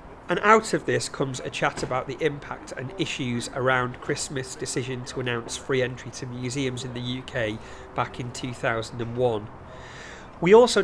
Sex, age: male, 40-59